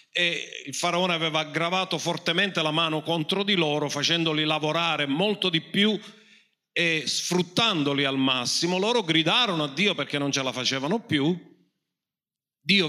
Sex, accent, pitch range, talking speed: male, native, 125-175 Hz, 145 wpm